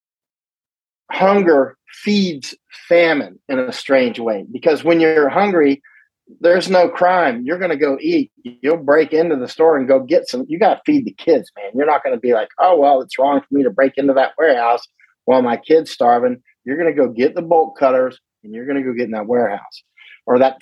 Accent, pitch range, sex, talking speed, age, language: American, 130-180 Hz, male, 220 wpm, 40-59, English